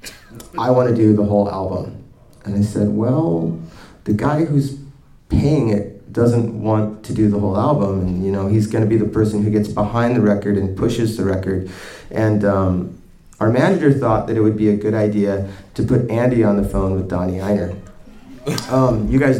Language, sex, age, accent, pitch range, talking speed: English, male, 30-49, American, 100-120 Hz, 200 wpm